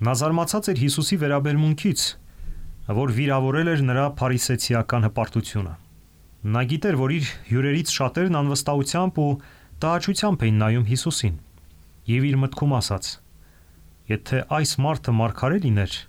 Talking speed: 50 wpm